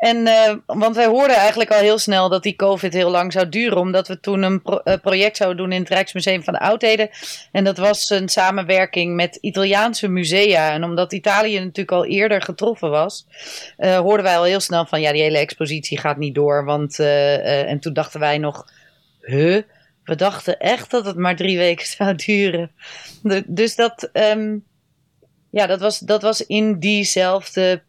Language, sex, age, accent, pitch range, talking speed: Dutch, female, 30-49, Dutch, 155-195 Hz, 190 wpm